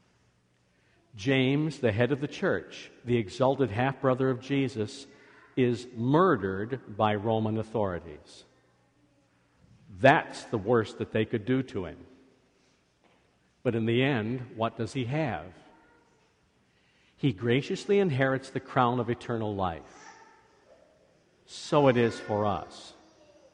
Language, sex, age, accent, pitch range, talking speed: English, male, 50-69, American, 110-135 Hz, 115 wpm